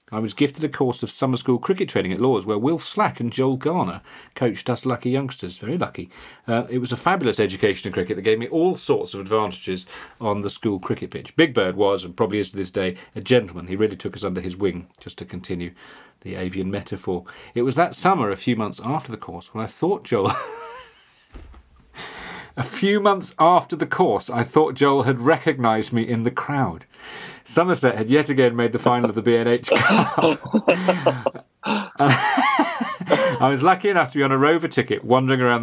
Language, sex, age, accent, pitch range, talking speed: English, male, 40-59, British, 100-135 Hz, 205 wpm